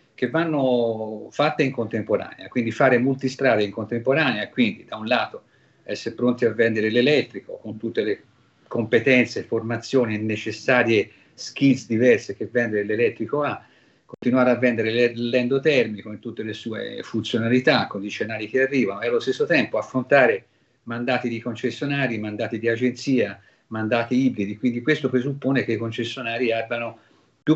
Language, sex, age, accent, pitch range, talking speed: Italian, male, 50-69, native, 115-135 Hz, 145 wpm